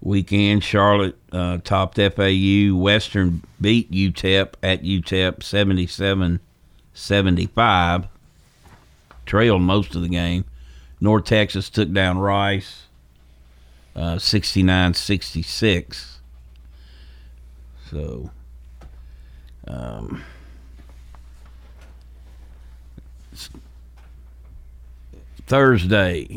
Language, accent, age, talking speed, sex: English, American, 60-79, 65 wpm, male